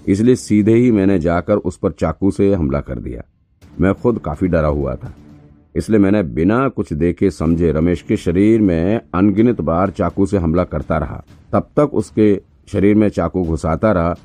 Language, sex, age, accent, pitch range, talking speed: Hindi, male, 50-69, native, 80-100 Hz, 180 wpm